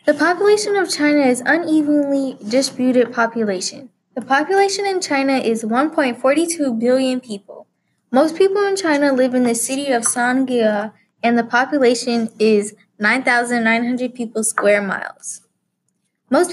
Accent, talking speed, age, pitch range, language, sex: American, 125 wpm, 10-29, 220-275 Hz, English, female